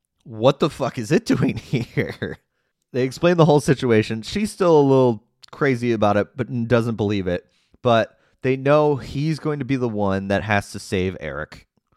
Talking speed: 185 wpm